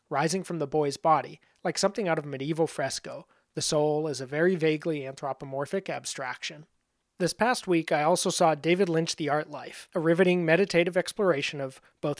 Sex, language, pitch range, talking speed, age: male, English, 145-175 Hz, 180 wpm, 30-49